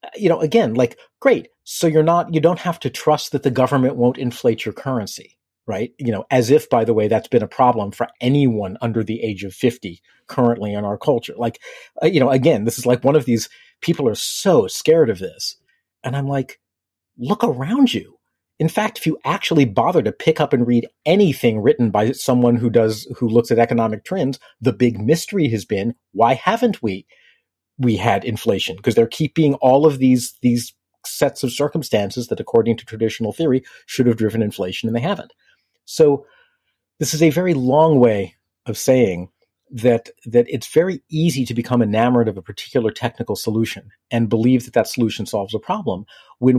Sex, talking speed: male, 195 wpm